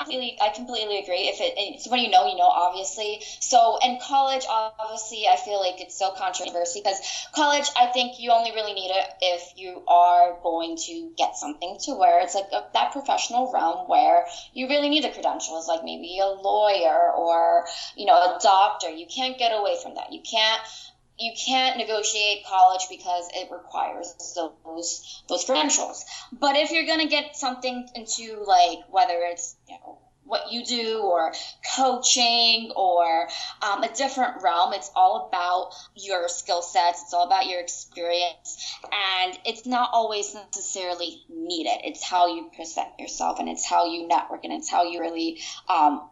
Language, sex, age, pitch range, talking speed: English, female, 20-39, 175-255 Hz, 175 wpm